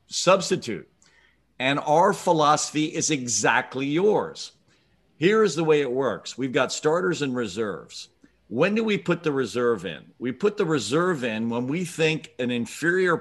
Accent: American